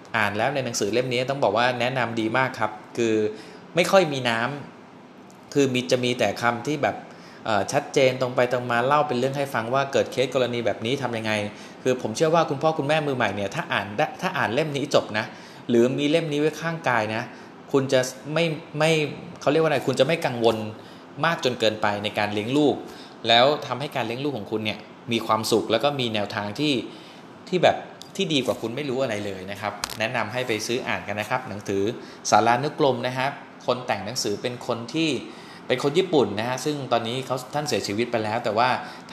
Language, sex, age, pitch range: Thai, male, 20-39, 110-140 Hz